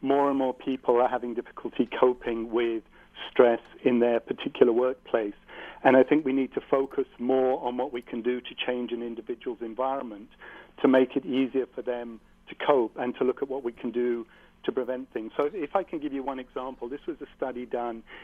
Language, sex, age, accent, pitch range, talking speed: English, male, 50-69, British, 120-135 Hz, 210 wpm